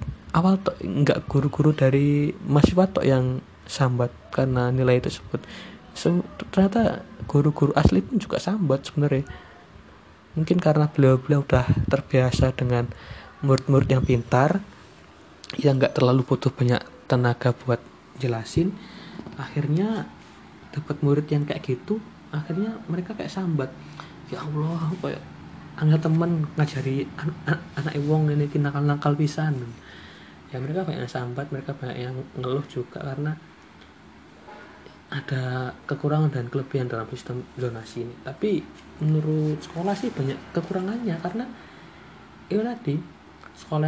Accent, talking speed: native, 120 wpm